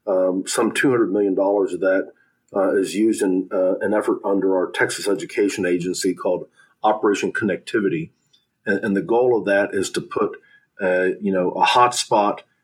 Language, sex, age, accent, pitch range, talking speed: English, male, 40-59, American, 95-115 Hz, 165 wpm